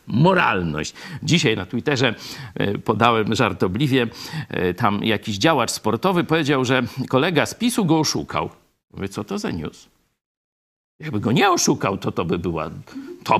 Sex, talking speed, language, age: male, 150 wpm, Polish, 50-69